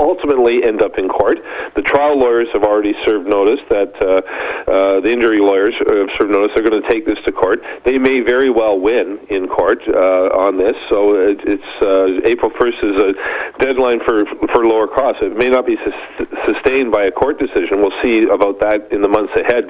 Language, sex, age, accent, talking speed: English, male, 40-59, American, 210 wpm